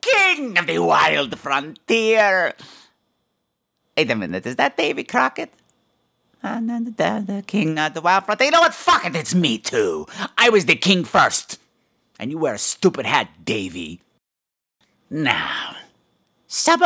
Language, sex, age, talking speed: English, male, 50-69, 150 wpm